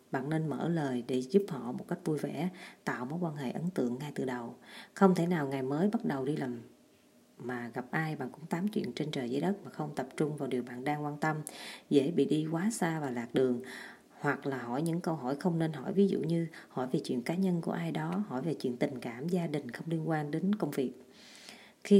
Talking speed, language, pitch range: 250 wpm, Vietnamese, 135-185 Hz